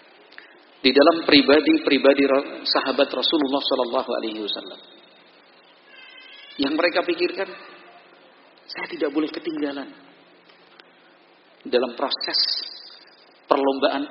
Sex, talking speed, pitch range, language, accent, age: male, 75 wpm, 130-170 Hz, Indonesian, native, 50-69